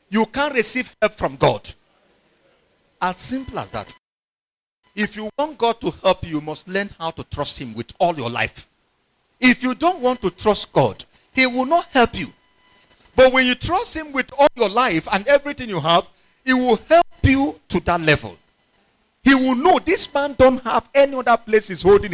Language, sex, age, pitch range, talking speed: English, male, 50-69, 170-255 Hz, 195 wpm